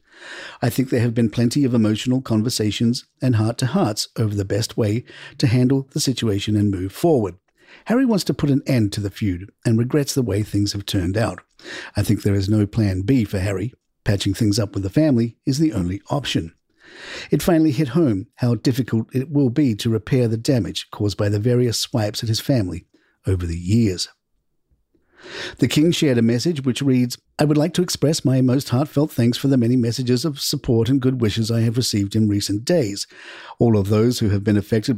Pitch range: 105-135 Hz